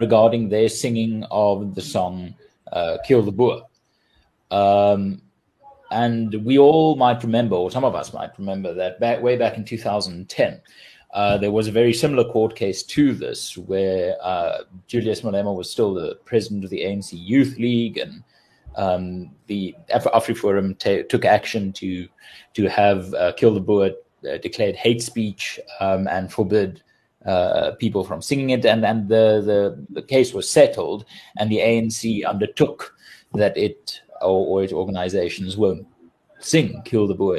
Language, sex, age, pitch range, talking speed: English, male, 30-49, 100-120 Hz, 155 wpm